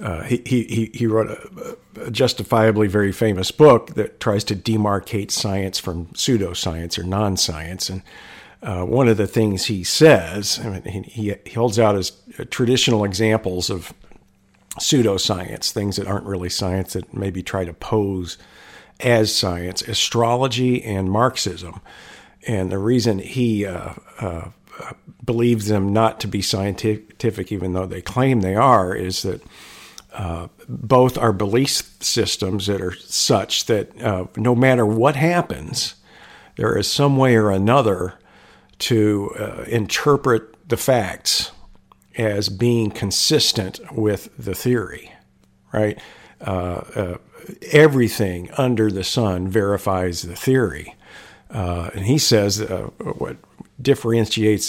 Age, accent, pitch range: 50-69, American, 95-115 Hz